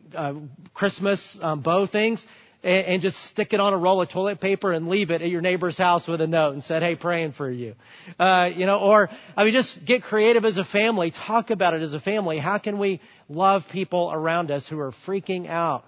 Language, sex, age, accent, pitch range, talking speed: English, male, 40-59, American, 155-185 Hz, 230 wpm